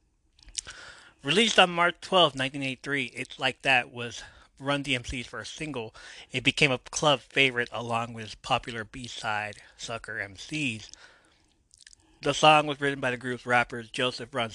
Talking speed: 140 wpm